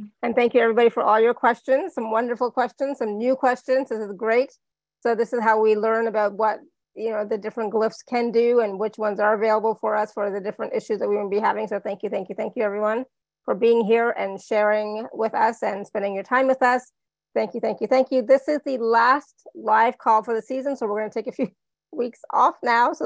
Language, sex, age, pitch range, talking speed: English, female, 30-49, 205-240 Hz, 245 wpm